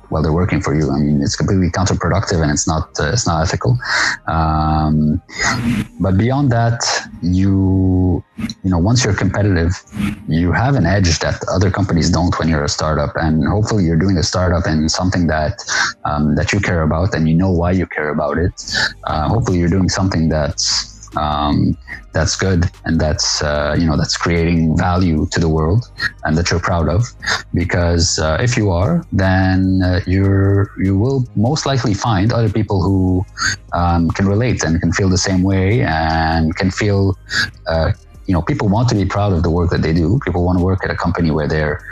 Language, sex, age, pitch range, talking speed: English, male, 30-49, 80-95 Hz, 195 wpm